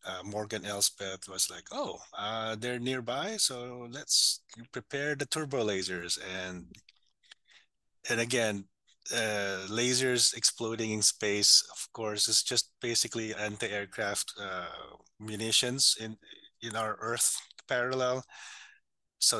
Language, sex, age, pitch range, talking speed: English, male, 20-39, 100-115 Hz, 115 wpm